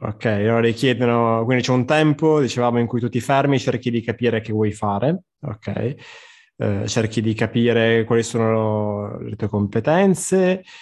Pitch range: 110-130 Hz